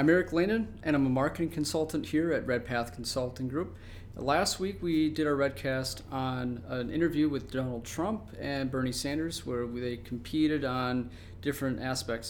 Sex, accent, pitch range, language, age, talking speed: male, American, 115-140 Hz, English, 40-59, 165 wpm